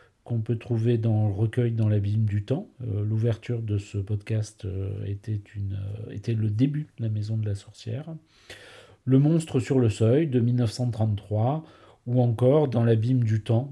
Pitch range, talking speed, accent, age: 100-120 Hz, 170 wpm, French, 40-59